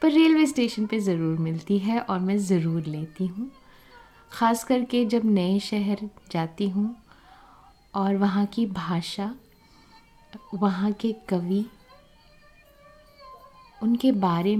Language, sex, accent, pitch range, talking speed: Hindi, female, native, 200-275 Hz, 115 wpm